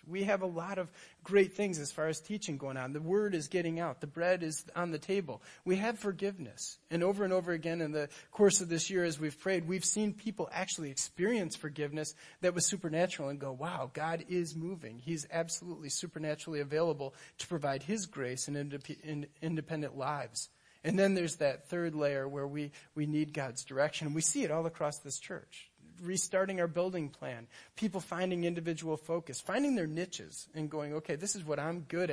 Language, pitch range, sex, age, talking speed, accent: English, 150-185 Hz, male, 30-49, 195 wpm, American